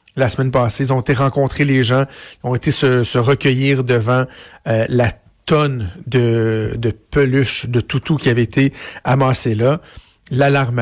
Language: French